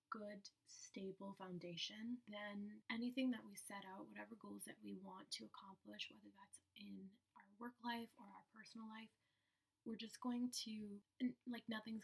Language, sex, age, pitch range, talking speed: English, female, 20-39, 195-230 Hz, 160 wpm